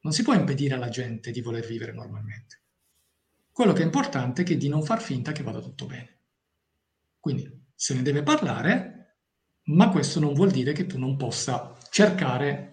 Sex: male